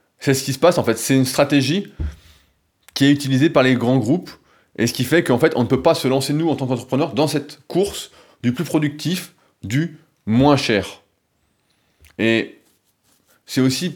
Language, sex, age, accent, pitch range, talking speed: French, male, 20-39, French, 110-145 Hz, 195 wpm